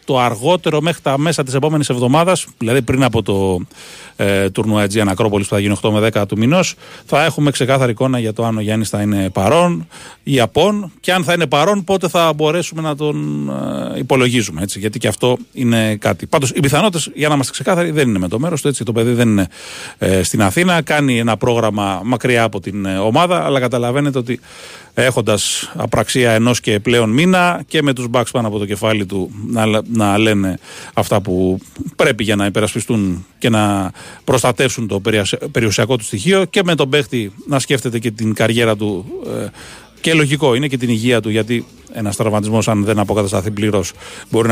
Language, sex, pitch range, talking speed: Greek, male, 105-145 Hz, 195 wpm